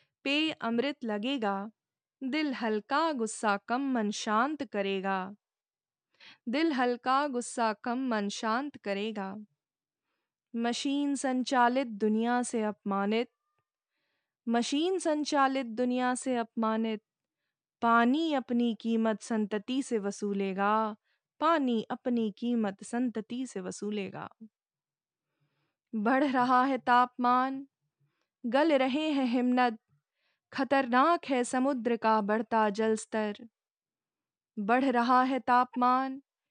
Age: 20-39